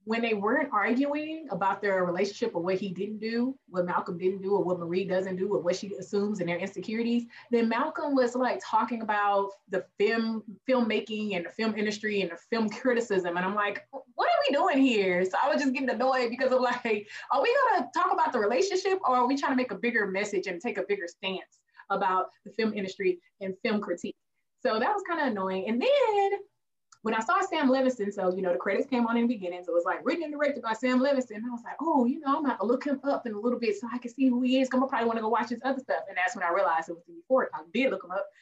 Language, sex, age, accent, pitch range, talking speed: English, female, 20-39, American, 195-260 Hz, 265 wpm